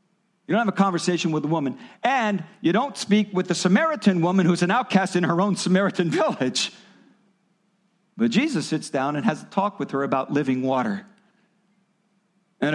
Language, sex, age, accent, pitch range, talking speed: English, male, 50-69, American, 195-235 Hz, 180 wpm